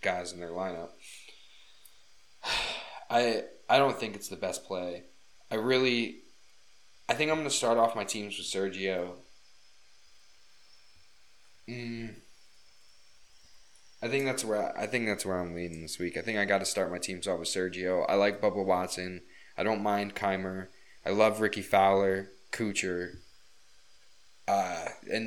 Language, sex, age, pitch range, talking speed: English, male, 20-39, 90-110 Hz, 150 wpm